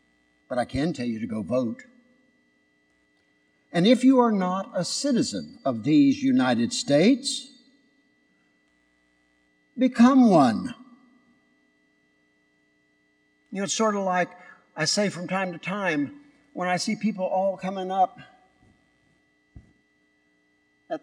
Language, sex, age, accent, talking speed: English, male, 60-79, American, 115 wpm